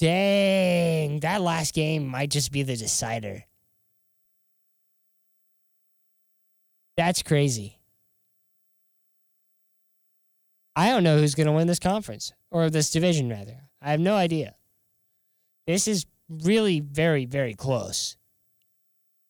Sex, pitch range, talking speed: male, 105-165 Hz, 105 wpm